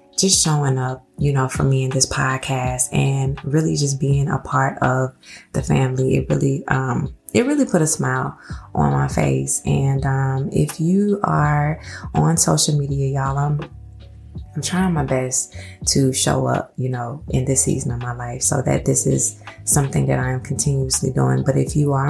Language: English